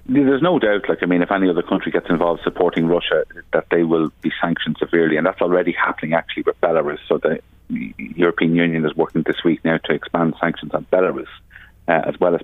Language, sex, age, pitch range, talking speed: English, male, 30-49, 80-90 Hz, 215 wpm